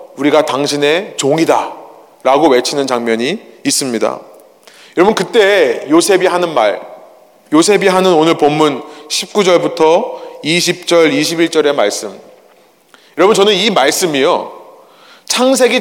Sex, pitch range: male, 160-250 Hz